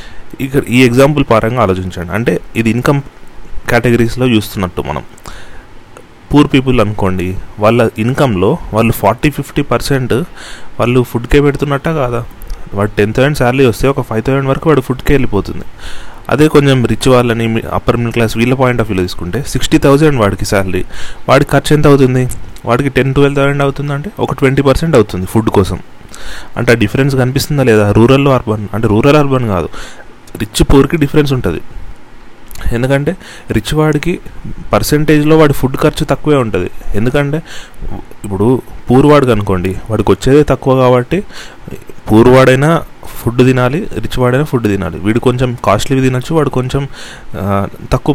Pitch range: 110-140 Hz